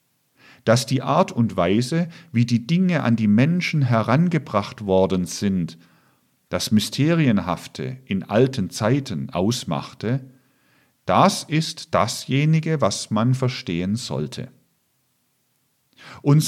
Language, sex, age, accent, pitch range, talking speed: German, male, 50-69, German, 105-140 Hz, 100 wpm